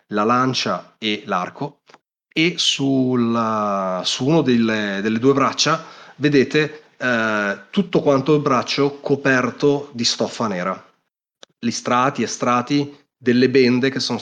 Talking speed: 125 wpm